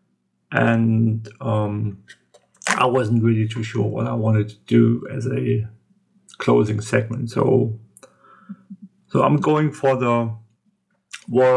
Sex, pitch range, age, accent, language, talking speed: male, 110-140 Hz, 40-59, German, English, 120 wpm